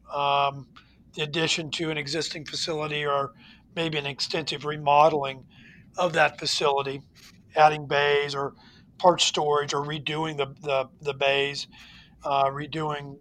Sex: male